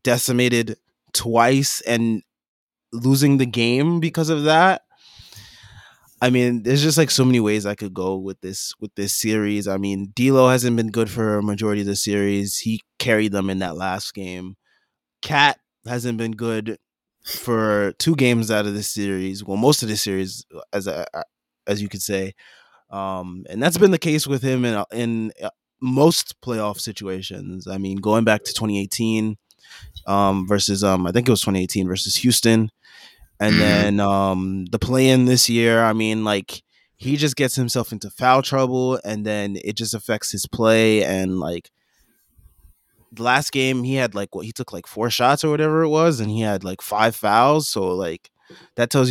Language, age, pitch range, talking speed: English, 20-39, 100-125 Hz, 180 wpm